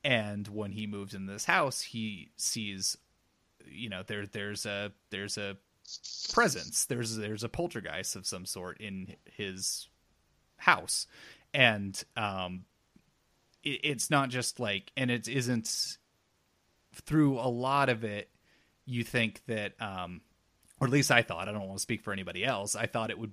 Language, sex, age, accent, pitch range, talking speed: English, male, 30-49, American, 100-120 Hz, 160 wpm